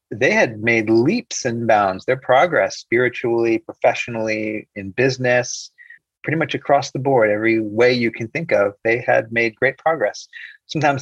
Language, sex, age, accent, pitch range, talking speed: English, male, 40-59, American, 115-155 Hz, 160 wpm